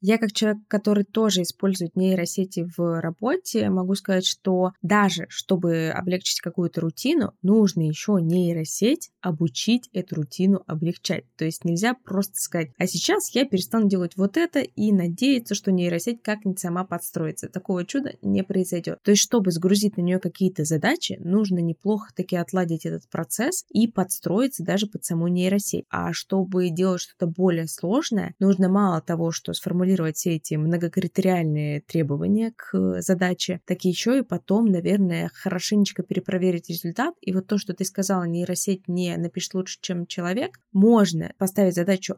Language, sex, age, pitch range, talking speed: Russian, female, 20-39, 170-205 Hz, 150 wpm